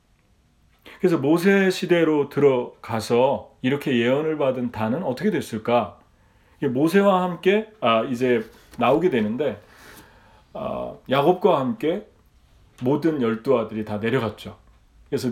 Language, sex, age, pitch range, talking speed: English, male, 40-59, 110-165 Hz, 100 wpm